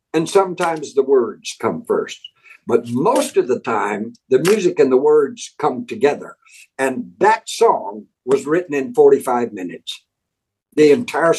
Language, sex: English, male